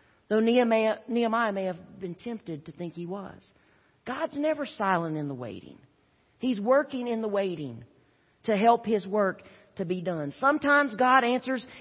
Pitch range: 165-240 Hz